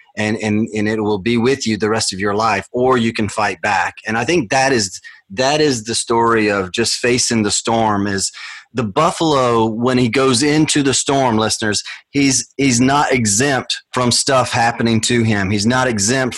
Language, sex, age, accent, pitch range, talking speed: English, male, 30-49, American, 110-130 Hz, 200 wpm